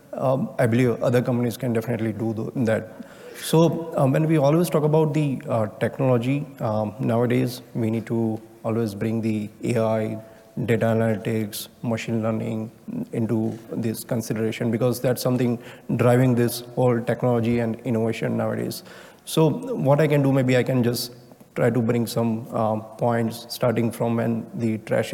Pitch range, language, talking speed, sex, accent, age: 115-125 Hz, English, 155 wpm, male, Indian, 30-49